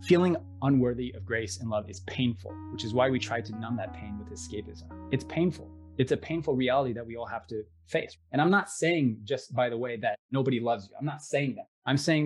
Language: English